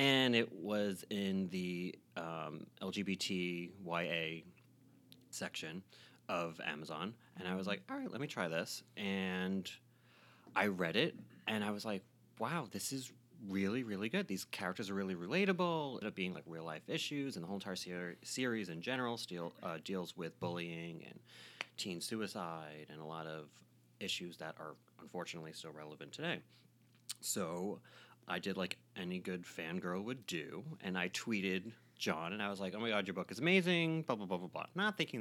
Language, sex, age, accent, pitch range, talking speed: English, male, 30-49, American, 90-120 Hz, 175 wpm